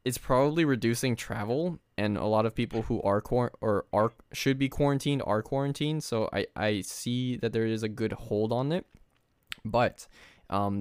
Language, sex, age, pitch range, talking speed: English, male, 10-29, 100-125 Hz, 180 wpm